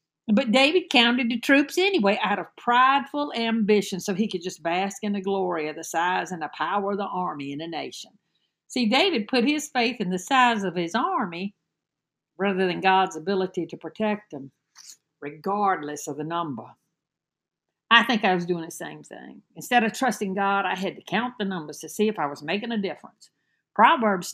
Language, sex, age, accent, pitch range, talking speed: English, female, 60-79, American, 175-215 Hz, 195 wpm